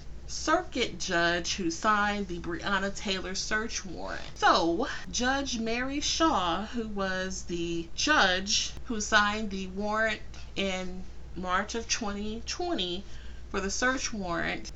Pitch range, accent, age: 170-210 Hz, American, 30-49